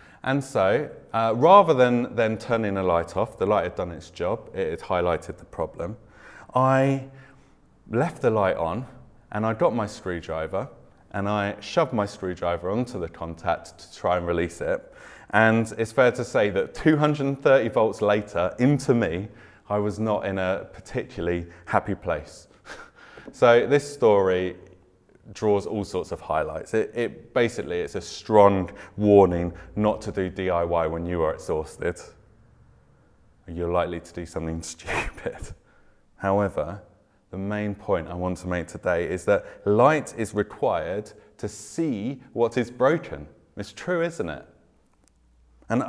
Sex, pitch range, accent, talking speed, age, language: male, 90-125 Hz, British, 150 wpm, 30-49, English